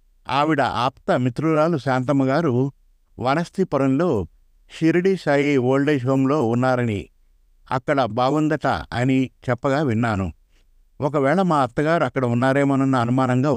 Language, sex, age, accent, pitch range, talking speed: Telugu, male, 60-79, native, 110-140 Hz, 95 wpm